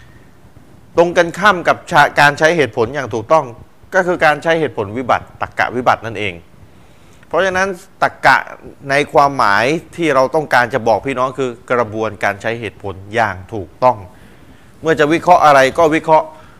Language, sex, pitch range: Thai, male, 115-165 Hz